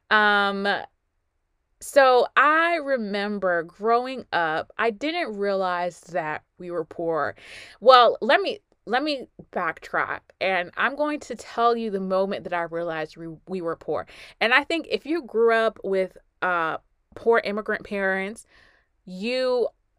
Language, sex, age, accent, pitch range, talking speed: English, female, 20-39, American, 180-235 Hz, 140 wpm